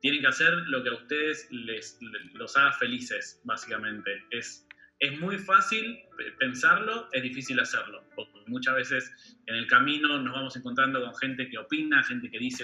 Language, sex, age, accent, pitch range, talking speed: Spanish, male, 20-39, Argentinian, 125-195 Hz, 175 wpm